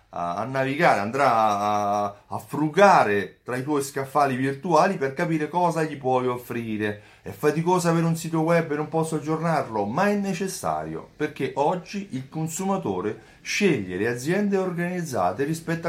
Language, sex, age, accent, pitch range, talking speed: Italian, male, 30-49, native, 110-170 Hz, 145 wpm